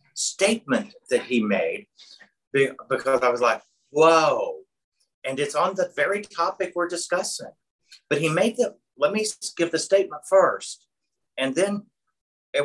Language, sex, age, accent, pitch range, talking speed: English, male, 50-69, American, 140-215 Hz, 140 wpm